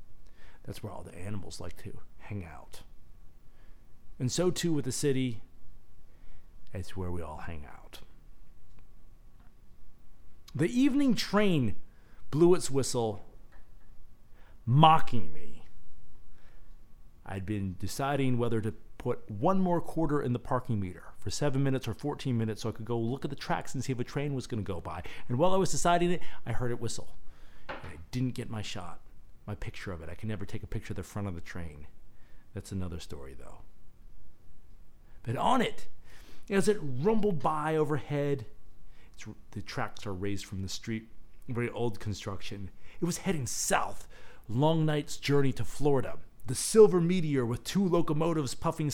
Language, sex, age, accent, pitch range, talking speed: English, male, 40-59, American, 100-145 Hz, 165 wpm